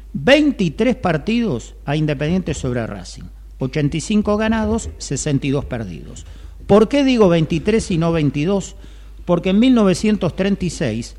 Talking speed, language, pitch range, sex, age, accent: 105 wpm, Spanish, 135-195 Hz, male, 50-69, Argentinian